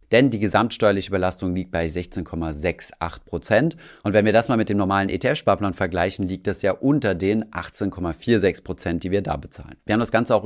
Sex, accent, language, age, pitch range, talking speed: male, German, German, 30-49, 95-110 Hz, 185 wpm